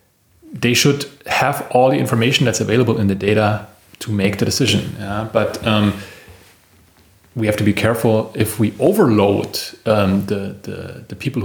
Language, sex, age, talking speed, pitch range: English, male, 30-49, 150 wpm, 100-120 Hz